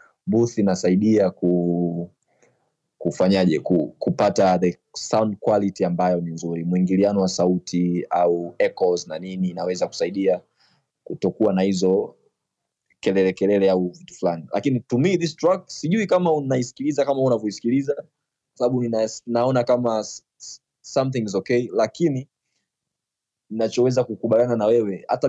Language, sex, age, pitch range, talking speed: Swahili, male, 20-39, 95-120 Hz, 125 wpm